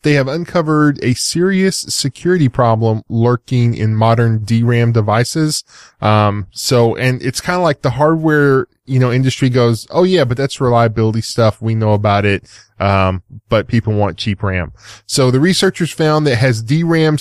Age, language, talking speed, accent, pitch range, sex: 10-29, English, 170 wpm, American, 110-140 Hz, male